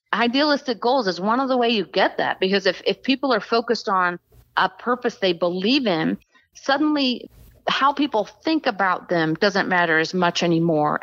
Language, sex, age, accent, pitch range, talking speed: English, female, 40-59, American, 185-235 Hz, 180 wpm